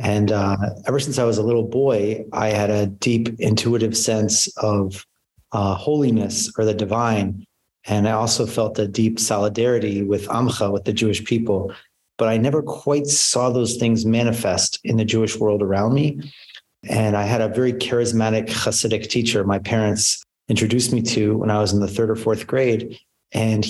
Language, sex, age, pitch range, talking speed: English, male, 30-49, 105-120 Hz, 180 wpm